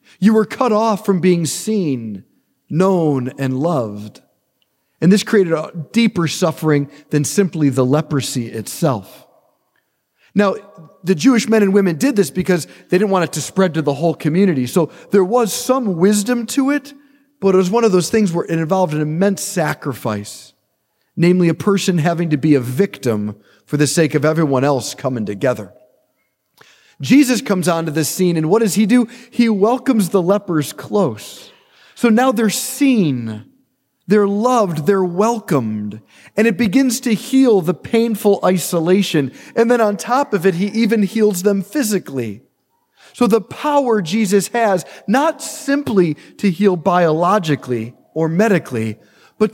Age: 40-59